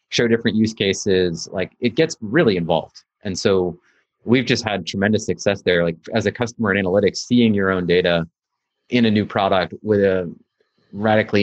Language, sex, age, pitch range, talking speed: English, male, 30-49, 90-115 Hz, 180 wpm